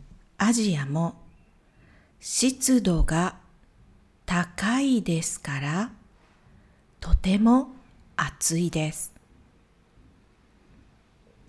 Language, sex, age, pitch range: Japanese, female, 50-69, 170-240 Hz